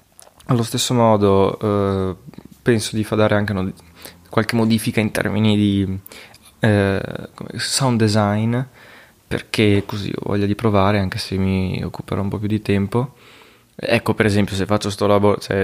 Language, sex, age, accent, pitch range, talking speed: Italian, male, 20-39, native, 100-115 Hz, 155 wpm